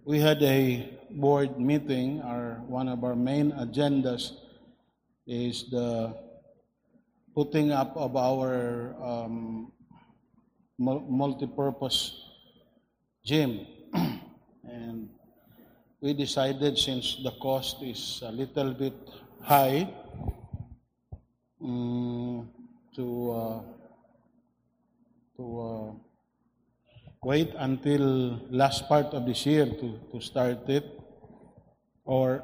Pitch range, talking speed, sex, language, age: 120-140 Hz, 90 wpm, male, English, 50-69